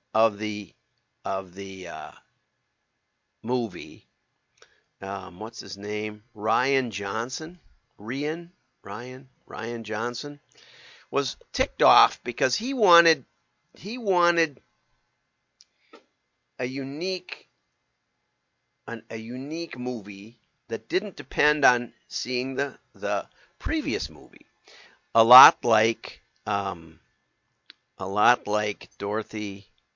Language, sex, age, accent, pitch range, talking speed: English, male, 50-69, American, 105-145 Hz, 90 wpm